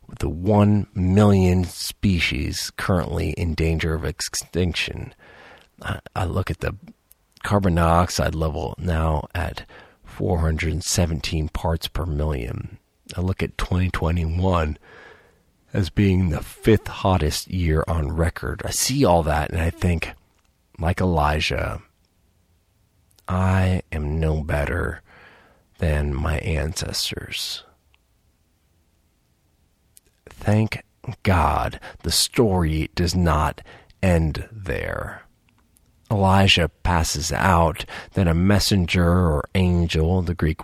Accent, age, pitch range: American, 40-59, 80-95 Hz